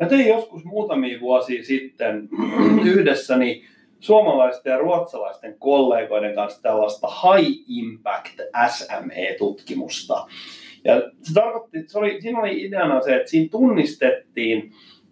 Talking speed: 110 wpm